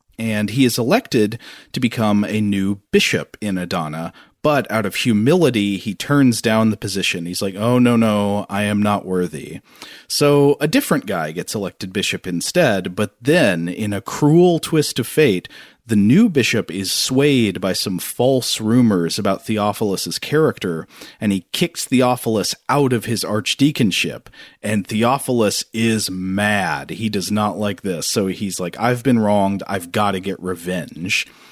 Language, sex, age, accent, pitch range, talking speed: English, male, 40-59, American, 100-125 Hz, 160 wpm